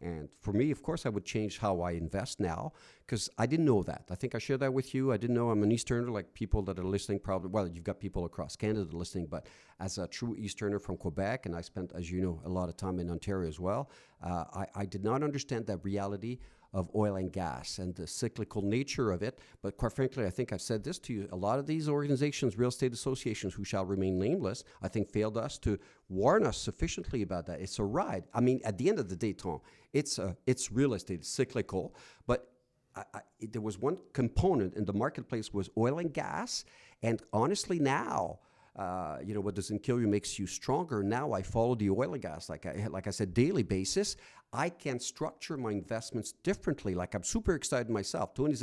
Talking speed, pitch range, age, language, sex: 230 wpm, 95-120 Hz, 50-69, English, male